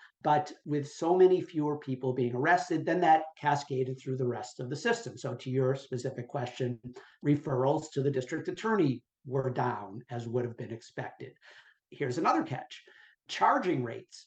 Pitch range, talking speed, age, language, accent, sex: 130-150 Hz, 165 wpm, 50-69, English, American, male